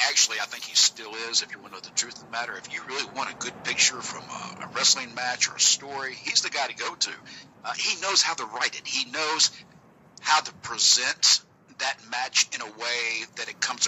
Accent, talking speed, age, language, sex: American, 240 wpm, 50-69, English, male